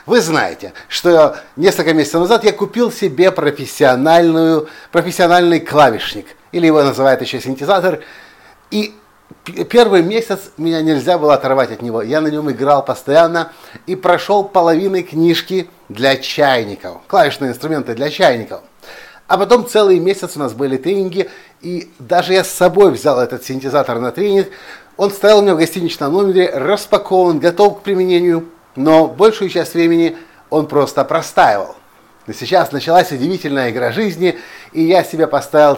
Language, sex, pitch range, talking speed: Russian, male, 145-190 Hz, 145 wpm